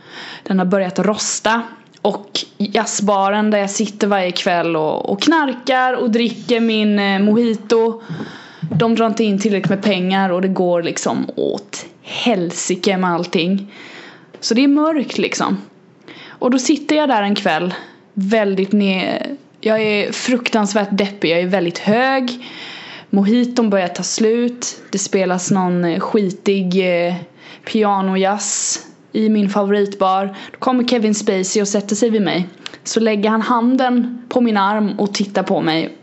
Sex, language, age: female, Swedish, 20-39